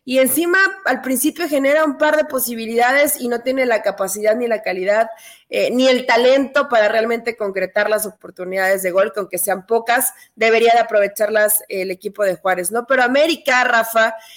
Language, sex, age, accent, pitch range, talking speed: Spanish, female, 30-49, Mexican, 215-265 Hz, 175 wpm